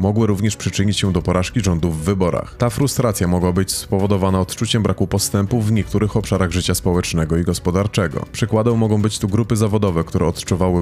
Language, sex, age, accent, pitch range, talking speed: Polish, male, 30-49, native, 90-110 Hz, 175 wpm